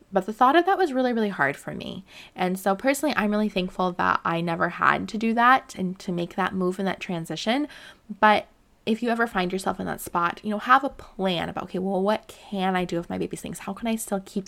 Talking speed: 255 wpm